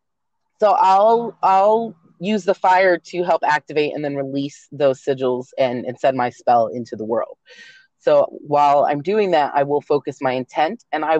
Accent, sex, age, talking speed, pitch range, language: American, female, 30-49, 180 wpm, 135-185 Hz, English